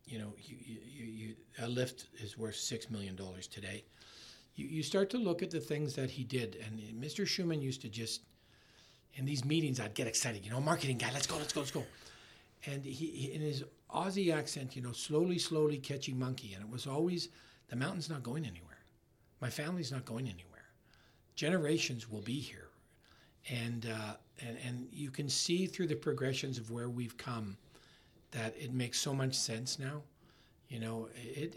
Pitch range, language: 115-155 Hz, English